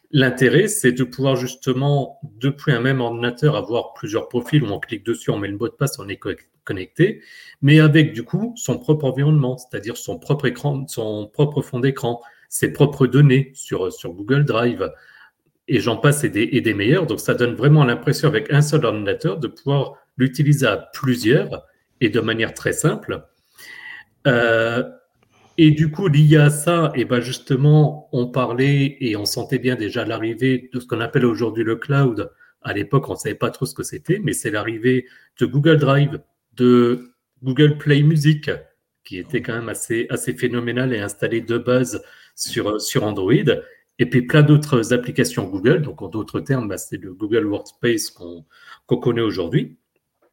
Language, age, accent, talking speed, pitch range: French, 30-49, French, 180 wpm, 120-145 Hz